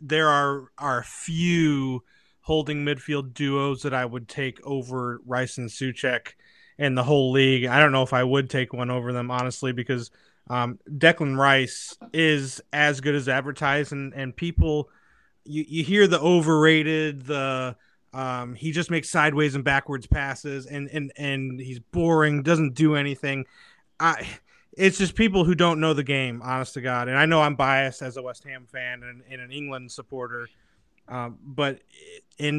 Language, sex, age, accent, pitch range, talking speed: English, male, 30-49, American, 130-150 Hz, 180 wpm